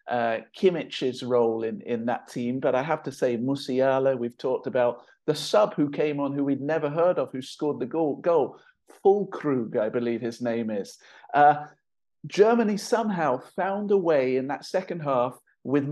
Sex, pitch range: male, 130-185 Hz